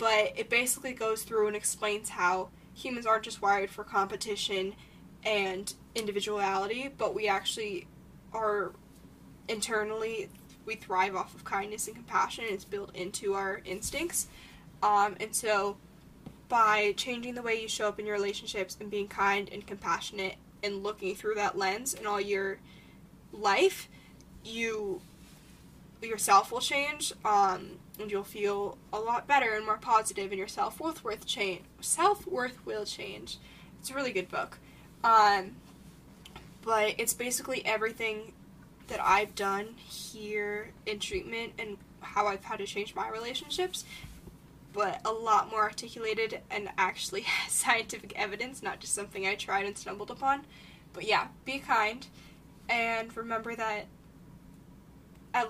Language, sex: English, female